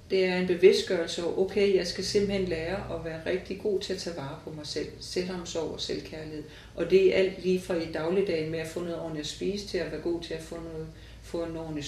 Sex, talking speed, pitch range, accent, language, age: female, 240 wpm, 150-185 Hz, native, Danish, 40-59